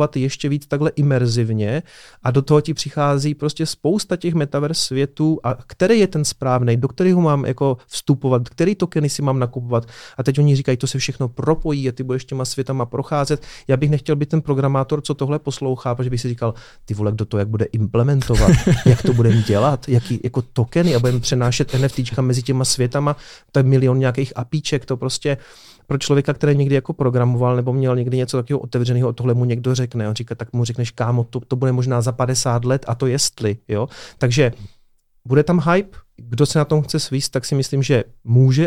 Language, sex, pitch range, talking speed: Czech, male, 120-145 Hz, 205 wpm